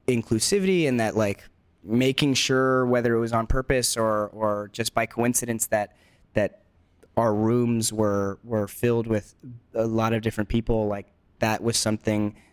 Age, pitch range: 20-39, 110-140 Hz